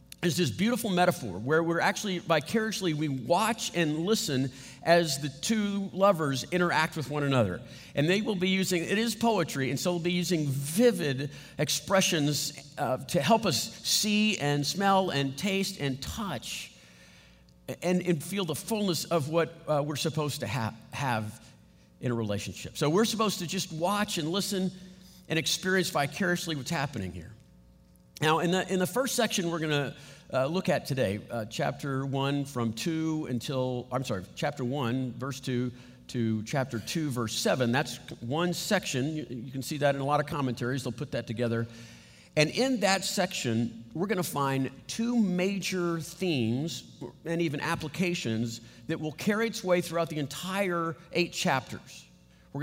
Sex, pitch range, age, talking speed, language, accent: male, 130-180 Hz, 50-69, 170 wpm, English, American